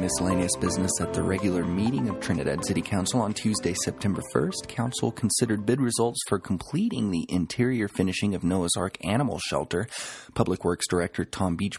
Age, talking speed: 30-49, 170 wpm